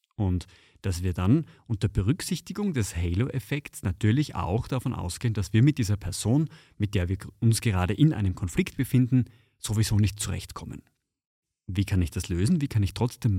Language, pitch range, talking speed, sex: German, 100-140 Hz, 170 wpm, male